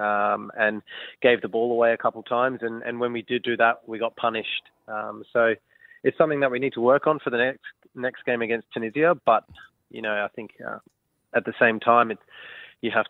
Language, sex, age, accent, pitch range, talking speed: English, male, 20-39, Australian, 110-120 Hz, 230 wpm